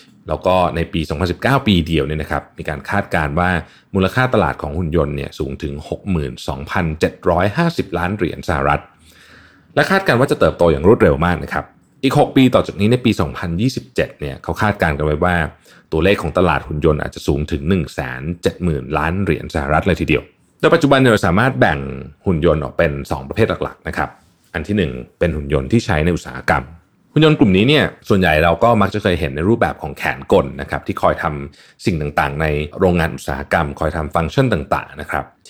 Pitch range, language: 75-100 Hz, Thai